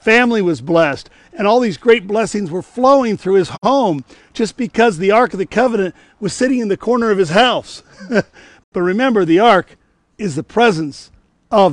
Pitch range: 170-215 Hz